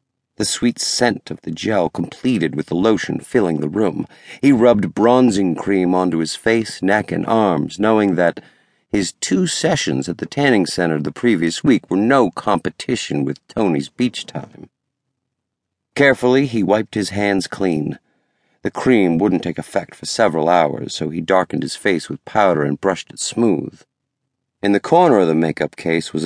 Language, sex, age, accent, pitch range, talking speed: English, male, 50-69, American, 85-105 Hz, 170 wpm